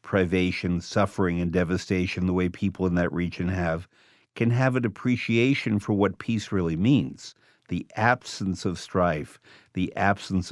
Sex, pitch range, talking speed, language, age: male, 85-110 Hz, 150 wpm, English, 50-69